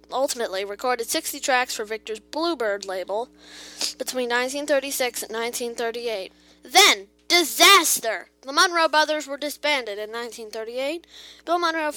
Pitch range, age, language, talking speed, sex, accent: 230-310 Hz, 20-39, English, 115 wpm, female, American